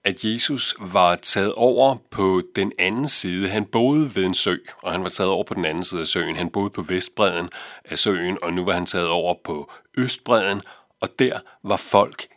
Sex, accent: male, native